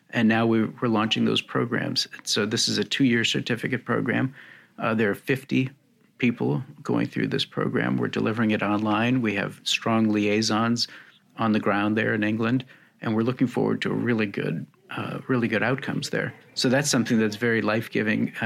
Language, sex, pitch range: English, male, 110-130 Hz